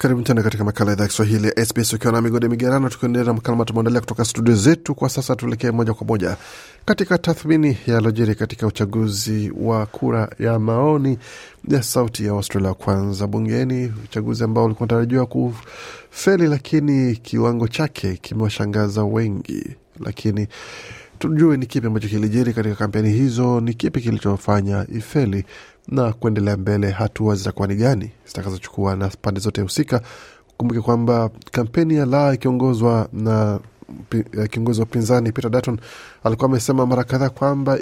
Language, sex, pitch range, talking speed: Swahili, male, 105-125 Hz, 145 wpm